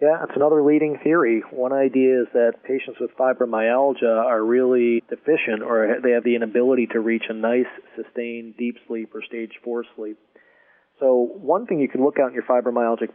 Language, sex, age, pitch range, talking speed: English, male, 40-59, 110-125 Hz, 185 wpm